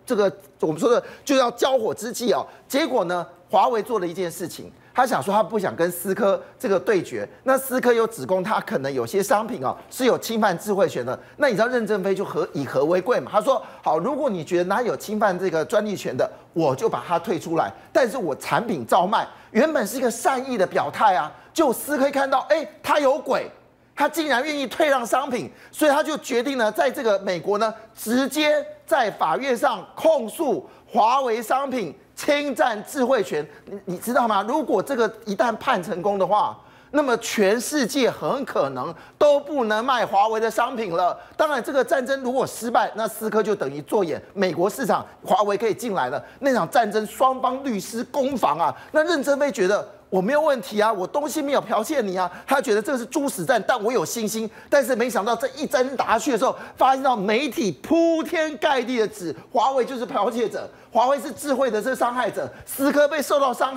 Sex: male